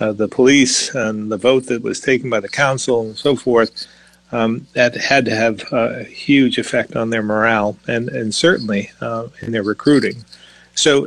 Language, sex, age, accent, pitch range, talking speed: English, male, 40-59, American, 115-130 Hz, 185 wpm